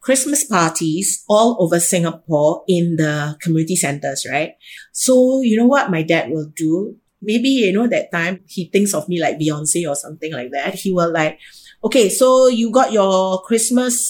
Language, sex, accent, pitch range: Chinese, female, Malaysian, 185-255 Hz